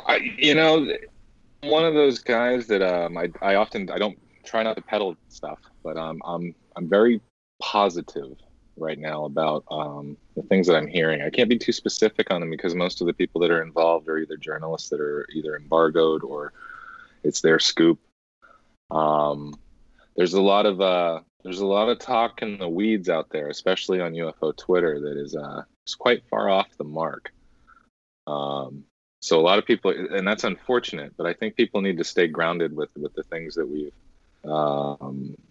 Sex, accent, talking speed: male, American, 190 wpm